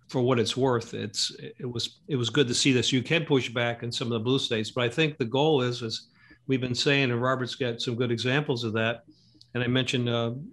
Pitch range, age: 115-130 Hz, 50-69